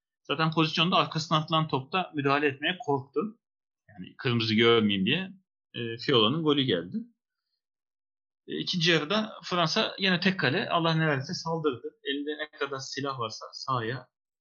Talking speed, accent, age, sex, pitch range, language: 125 wpm, native, 40-59, male, 110-180 Hz, Turkish